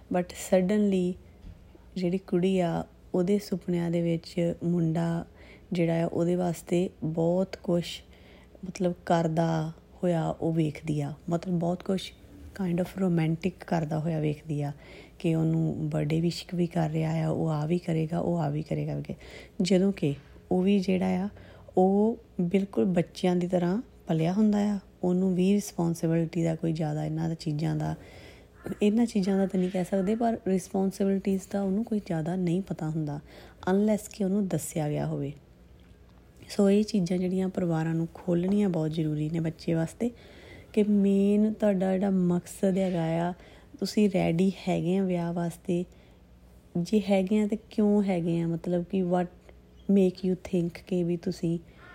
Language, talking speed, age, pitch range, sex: Punjabi, 155 wpm, 30-49, 160-190 Hz, female